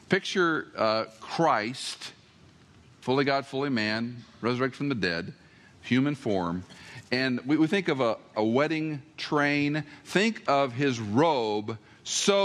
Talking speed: 130 wpm